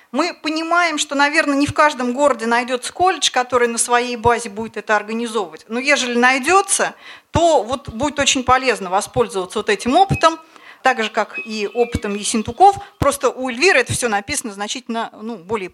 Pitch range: 220-285 Hz